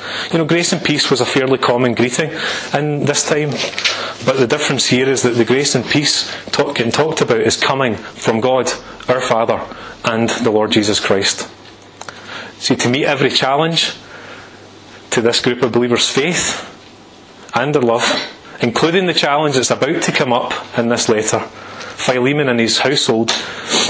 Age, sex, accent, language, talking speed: 30-49, male, British, English, 170 wpm